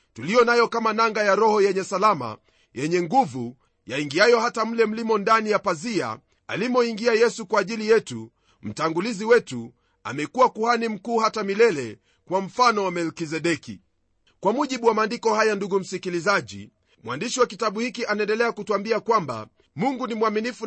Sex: male